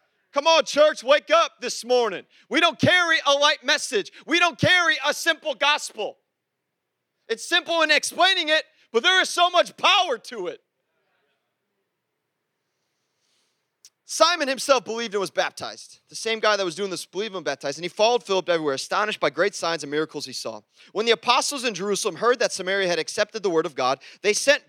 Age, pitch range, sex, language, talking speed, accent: 30-49, 180-285 Hz, male, English, 185 wpm, American